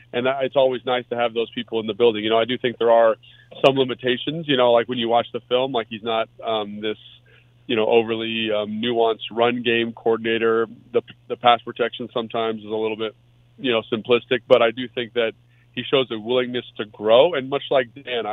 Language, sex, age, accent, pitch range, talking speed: English, male, 30-49, American, 110-120 Hz, 225 wpm